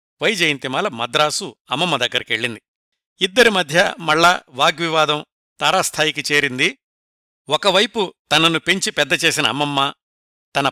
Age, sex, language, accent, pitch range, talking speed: 50-69, male, Telugu, native, 140-175 Hz, 90 wpm